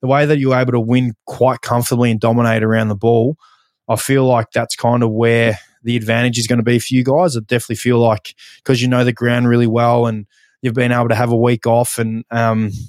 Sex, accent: male, Australian